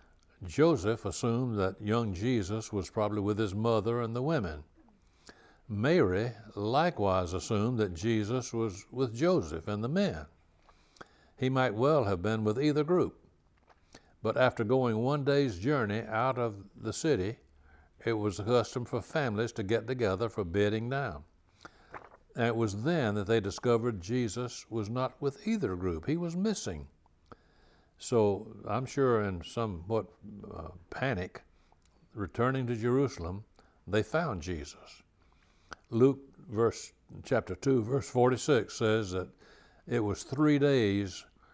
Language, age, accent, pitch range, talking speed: English, 60-79, American, 95-125 Hz, 135 wpm